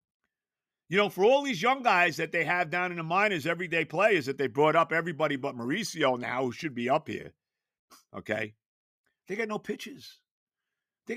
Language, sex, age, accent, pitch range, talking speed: English, male, 50-69, American, 130-190 Hz, 190 wpm